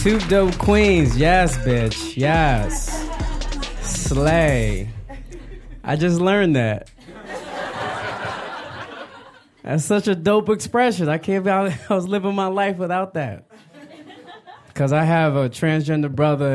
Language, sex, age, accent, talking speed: English, male, 20-39, American, 120 wpm